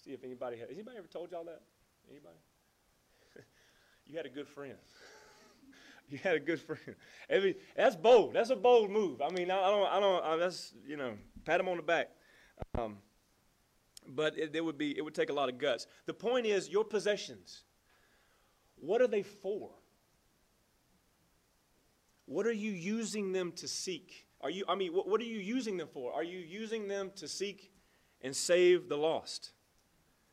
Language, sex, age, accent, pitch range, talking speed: English, male, 30-49, American, 150-220 Hz, 180 wpm